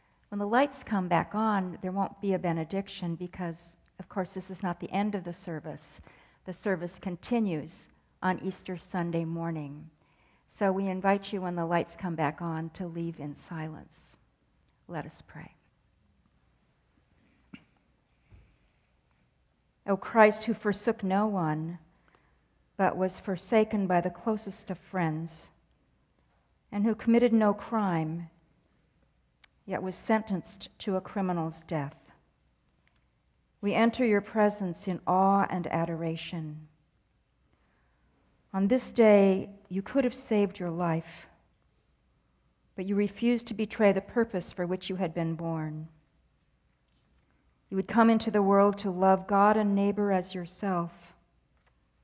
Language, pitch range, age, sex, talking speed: English, 165-200 Hz, 50-69, female, 135 wpm